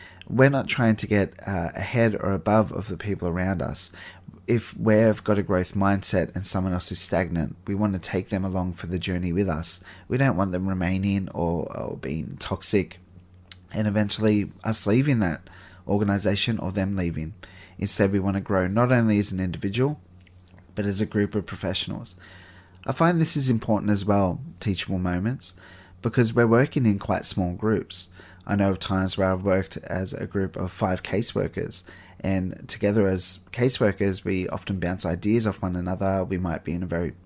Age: 20-39